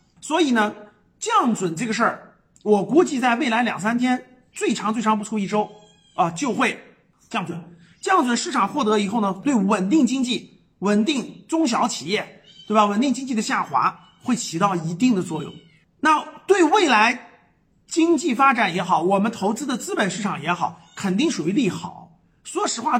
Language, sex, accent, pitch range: Chinese, male, native, 175-245 Hz